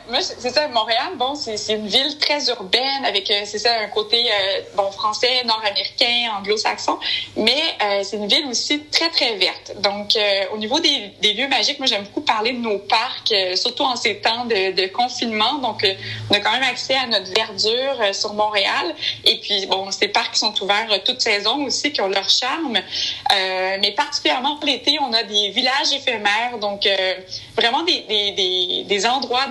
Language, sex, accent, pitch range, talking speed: French, female, Canadian, 205-255 Hz, 195 wpm